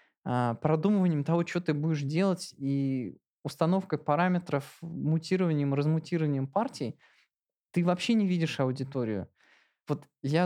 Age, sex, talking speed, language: 20-39, male, 110 wpm, Russian